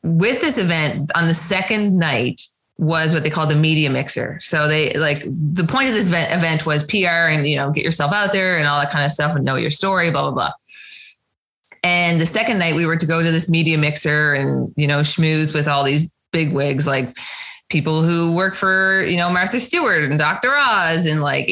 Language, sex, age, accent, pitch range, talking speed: English, female, 20-39, American, 150-180 Hz, 225 wpm